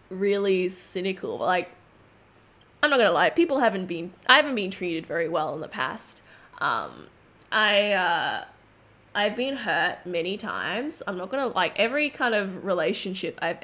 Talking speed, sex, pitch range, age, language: 165 wpm, female, 180-235 Hz, 10-29, English